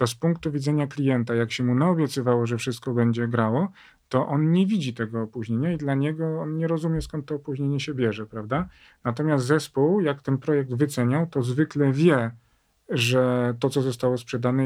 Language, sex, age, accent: Polish, male, 40-59, native